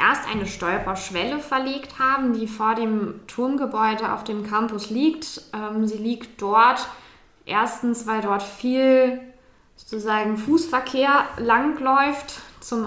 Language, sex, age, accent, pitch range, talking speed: German, female, 20-39, German, 205-245 Hz, 110 wpm